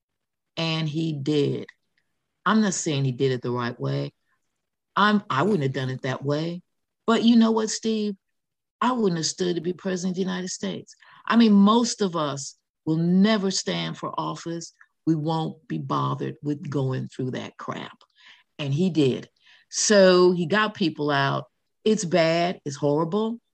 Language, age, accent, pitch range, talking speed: English, 50-69, American, 140-210 Hz, 175 wpm